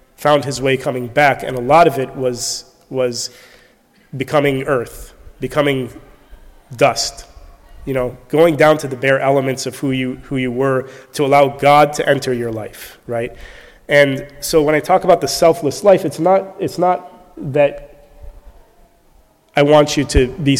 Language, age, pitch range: English, 30-49, 130-155 Hz